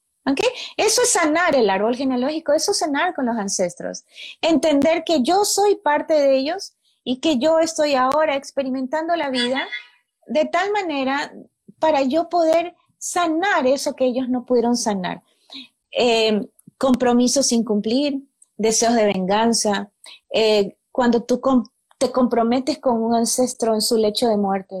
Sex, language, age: female, Spanish, 30-49